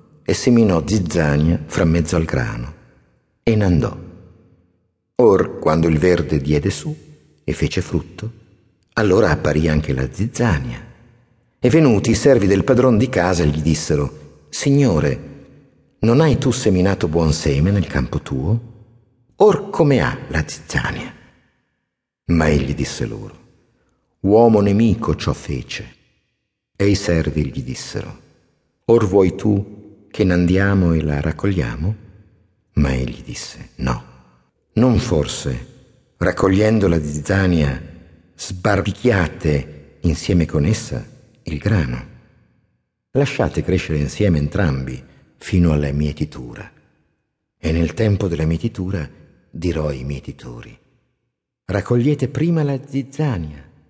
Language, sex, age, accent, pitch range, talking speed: Italian, male, 50-69, native, 75-110 Hz, 115 wpm